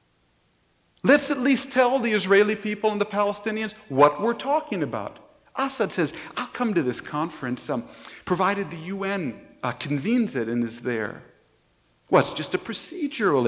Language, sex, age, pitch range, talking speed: English, male, 50-69, 140-235 Hz, 160 wpm